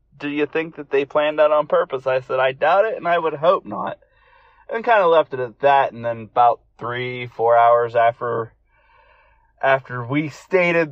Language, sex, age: English, male, 30-49